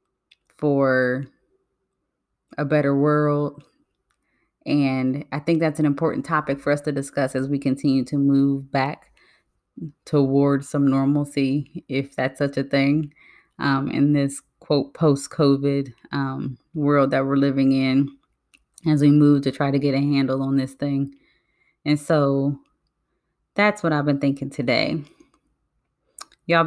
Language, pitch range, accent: English, 140-160 Hz, American